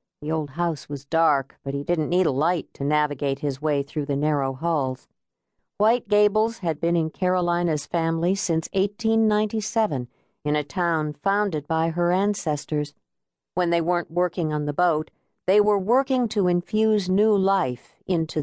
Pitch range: 150-195 Hz